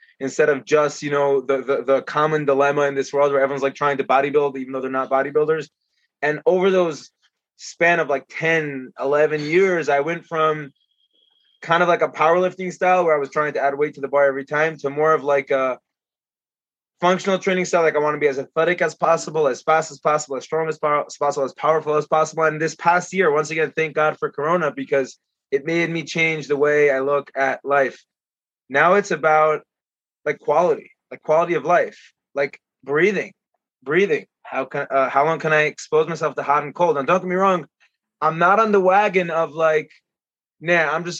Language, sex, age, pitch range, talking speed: English, male, 20-39, 140-165 Hz, 215 wpm